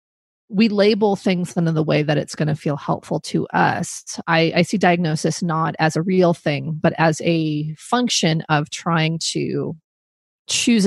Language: English